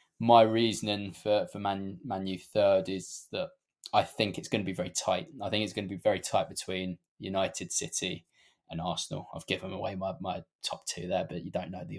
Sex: male